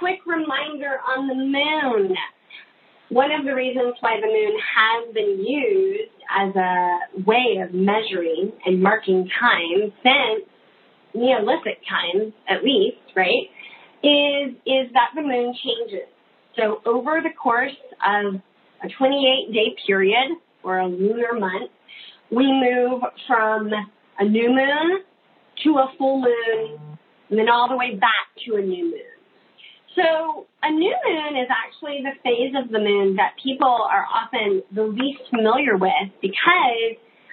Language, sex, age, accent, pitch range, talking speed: English, female, 30-49, American, 200-280 Hz, 140 wpm